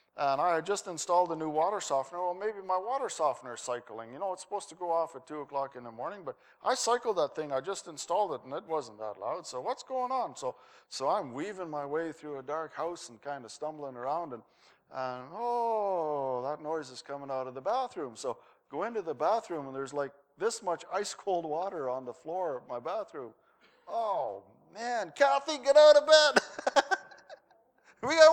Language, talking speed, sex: English, 210 wpm, male